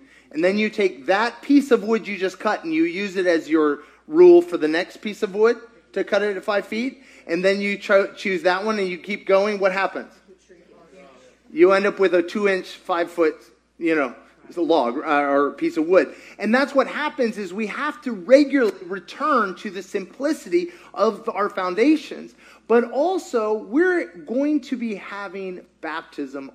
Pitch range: 185-270 Hz